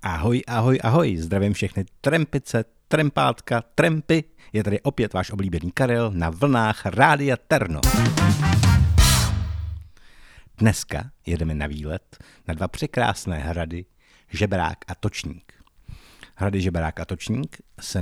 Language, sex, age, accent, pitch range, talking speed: Czech, male, 50-69, native, 80-115 Hz, 115 wpm